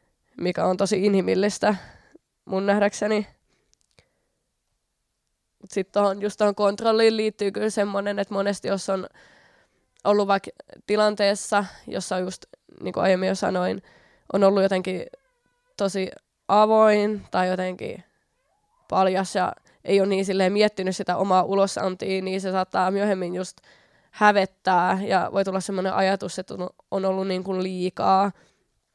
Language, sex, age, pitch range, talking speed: Finnish, female, 20-39, 185-205 Hz, 130 wpm